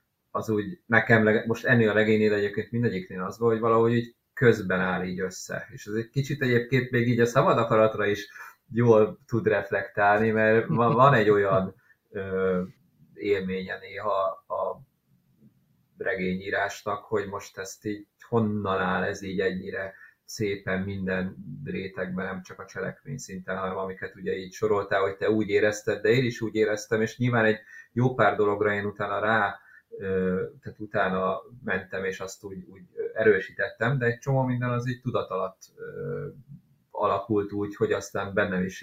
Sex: male